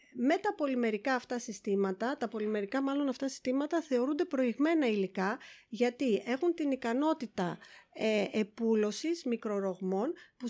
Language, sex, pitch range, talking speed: Greek, female, 215-285 Hz, 115 wpm